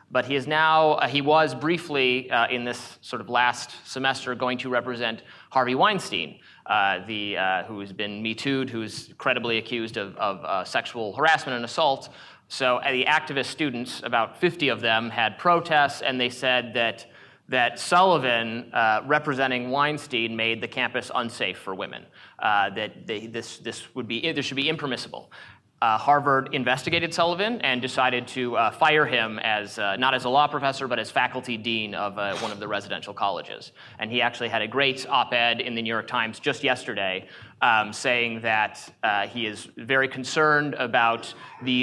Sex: male